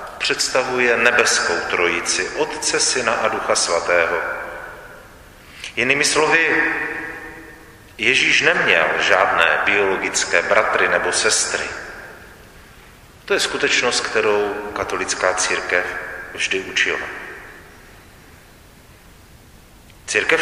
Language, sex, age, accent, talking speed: Czech, male, 40-59, native, 75 wpm